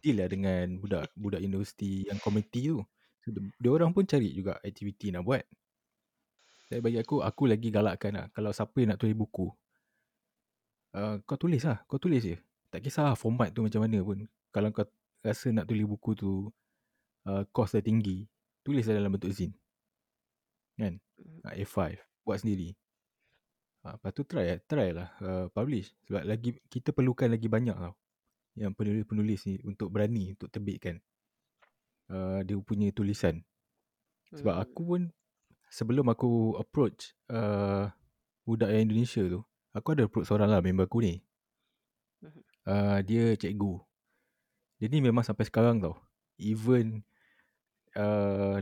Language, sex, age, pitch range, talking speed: Malay, male, 20-39, 100-120 Hz, 150 wpm